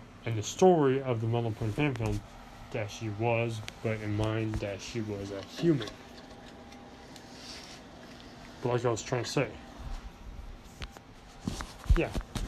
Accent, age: American, 20-39